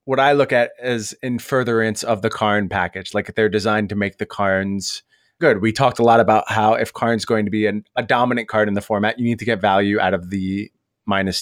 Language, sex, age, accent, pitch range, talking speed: English, male, 20-39, American, 105-130 Hz, 240 wpm